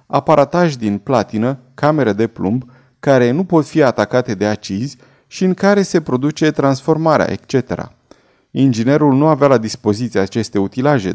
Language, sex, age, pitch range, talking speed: Romanian, male, 30-49, 115-150 Hz, 145 wpm